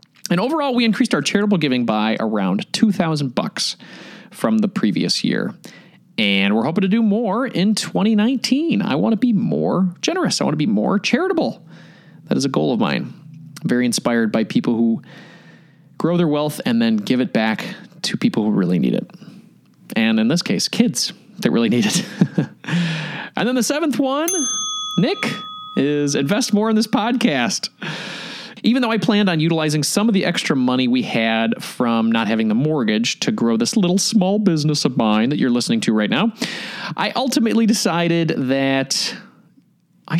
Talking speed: 175 wpm